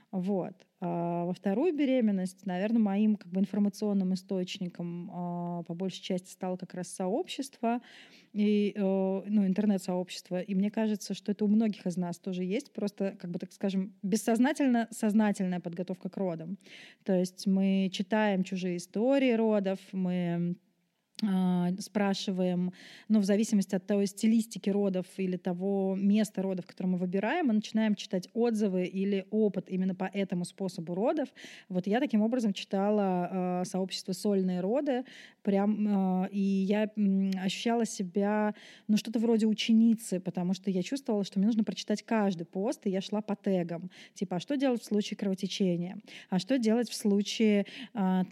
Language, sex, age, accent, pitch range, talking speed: Russian, female, 20-39, native, 185-215 Hz, 150 wpm